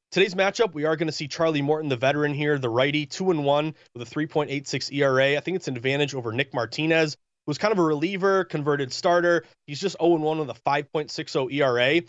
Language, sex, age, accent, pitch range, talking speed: English, male, 20-39, American, 140-175 Hz, 205 wpm